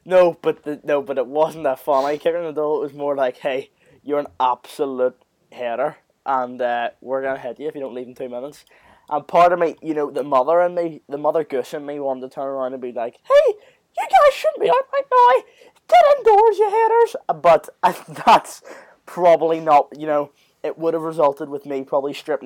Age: 20-39